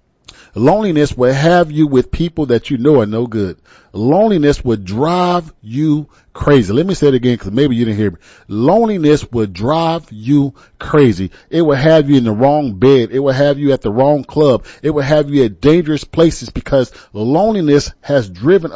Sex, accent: male, American